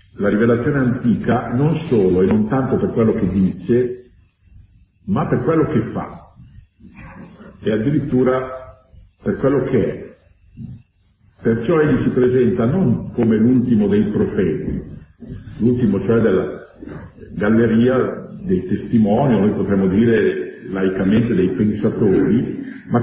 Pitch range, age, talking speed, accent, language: 105-135 Hz, 50-69, 120 wpm, native, Italian